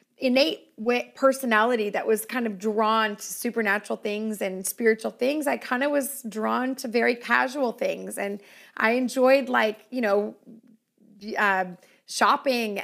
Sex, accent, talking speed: female, American, 140 wpm